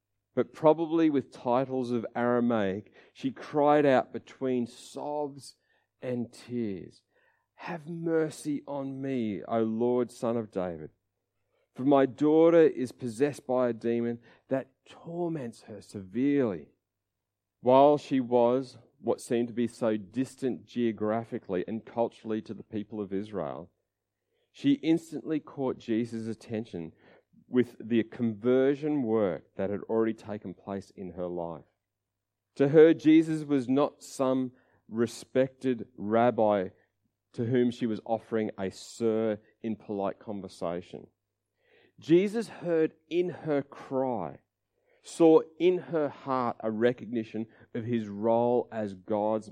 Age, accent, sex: 40-59, Australian, male